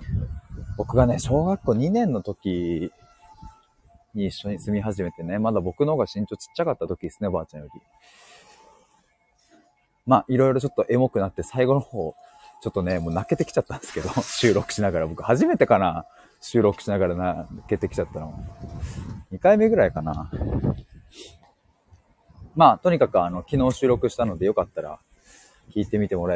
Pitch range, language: 90-130 Hz, Japanese